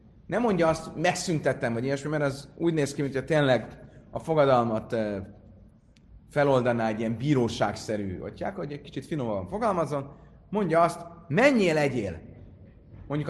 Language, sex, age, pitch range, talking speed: Hungarian, male, 30-49, 110-160 Hz, 135 wpm